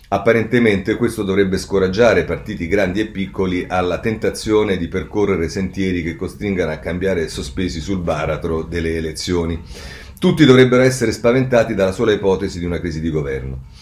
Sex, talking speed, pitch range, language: male, 150 wpm, 85-115 Hz, Italian